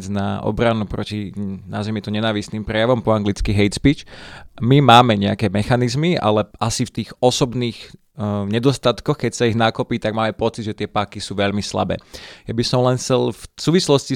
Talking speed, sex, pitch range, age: 165 wpm, male, 105-120 Hz, 20-39